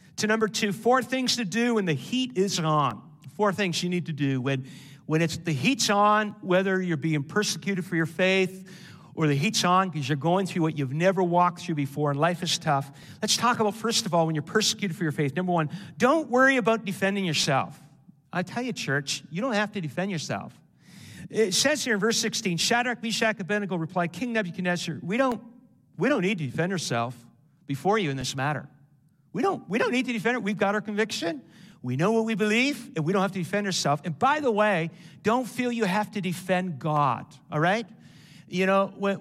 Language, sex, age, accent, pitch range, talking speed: English, male, 50-69, American, 160-215 Hz, 220 wpm